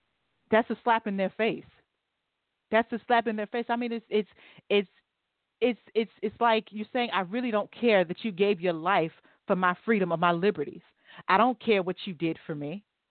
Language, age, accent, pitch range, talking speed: English, 40-59, American, 175-220 Hz, 210 wpm